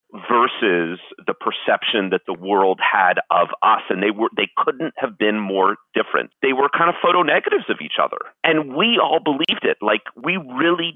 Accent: American